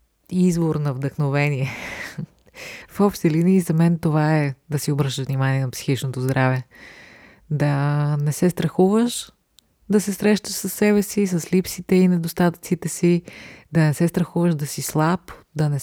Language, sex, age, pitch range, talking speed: Bulgarian, female, 20-39, 140-175 Hz, 155 wpm